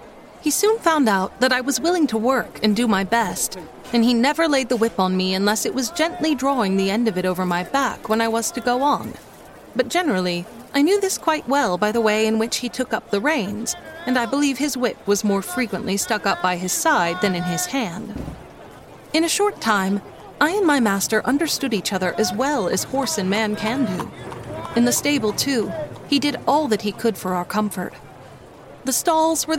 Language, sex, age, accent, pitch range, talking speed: English, female, 30-49, American, 205-285 Hz, 220 wpm